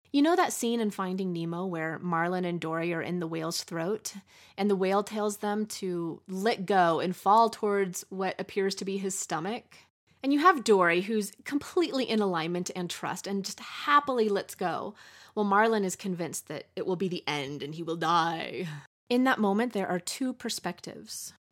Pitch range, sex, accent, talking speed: 185-240 Hz, female, American, 195 wpm